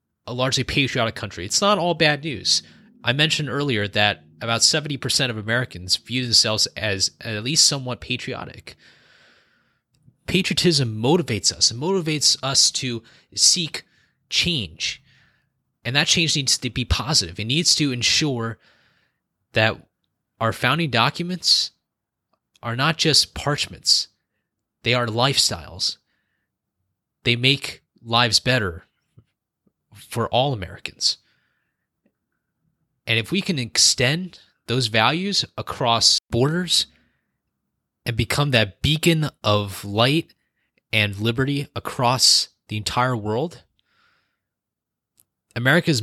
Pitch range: 110-140 Hz